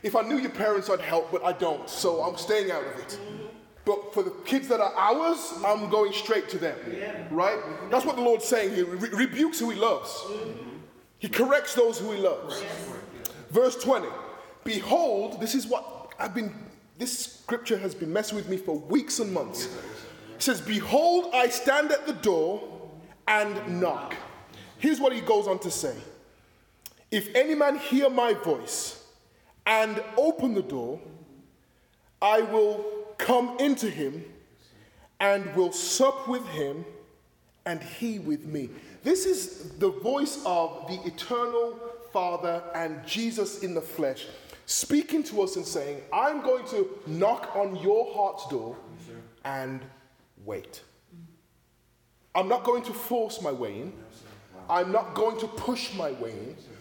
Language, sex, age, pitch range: English, male, 20-39, 185-255 Hz